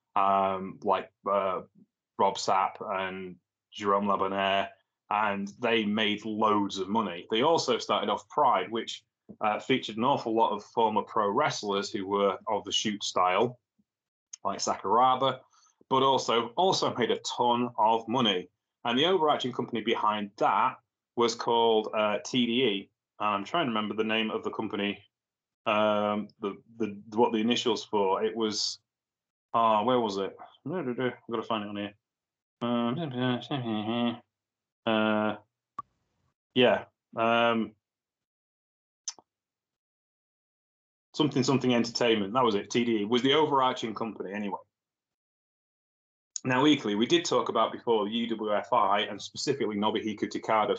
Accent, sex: British, male